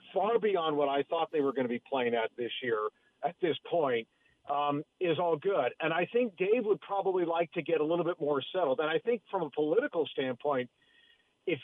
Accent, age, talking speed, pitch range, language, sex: American, 40-59, 220 wpm, 150-195 Hz, English, male